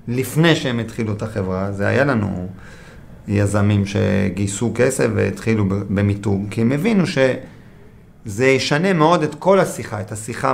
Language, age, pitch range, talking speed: Hebrew, 40-59, 105-155 Hz, 135 wpm